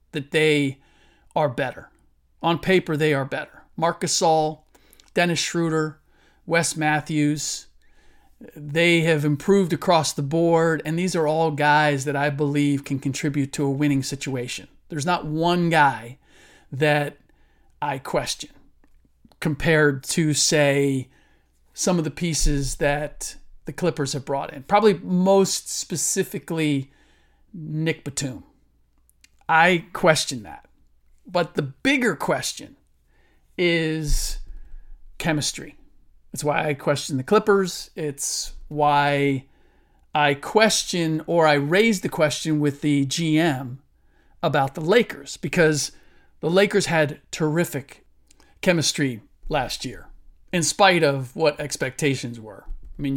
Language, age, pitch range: English, 40-59, 140-165 Hz